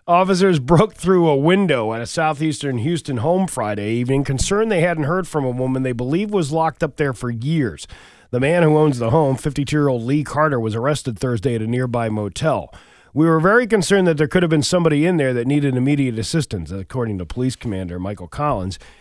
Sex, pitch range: male, 120-155 Hz